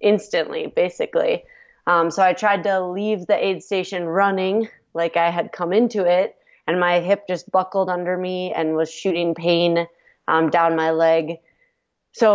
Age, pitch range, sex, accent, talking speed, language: 20-39, 165-205 Hz, female, American, 165 wpm, English